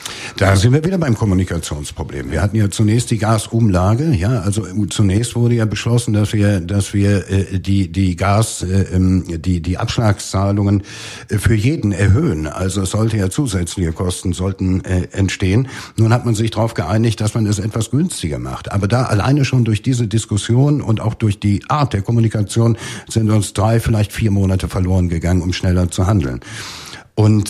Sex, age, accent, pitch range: male, 60-79, German, 95-115 Hz